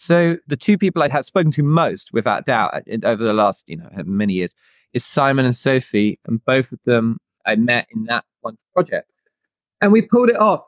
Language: English